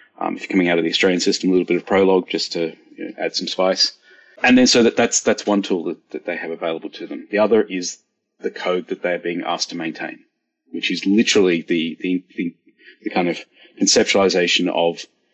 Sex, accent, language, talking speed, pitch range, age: male, Australian, English, 225 wpm, 90-110 Hz, 30-49